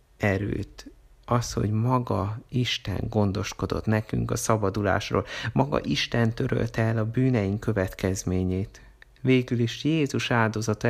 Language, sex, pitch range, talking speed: Hungarian, male, 95-115 Hz, 110 wpm